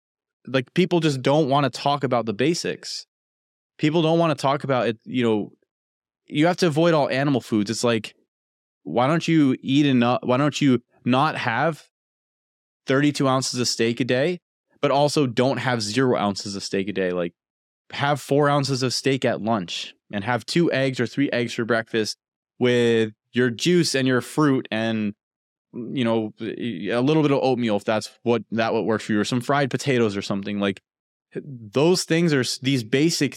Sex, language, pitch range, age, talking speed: male, English, 115-145 Hz, 20-39, 190 wpm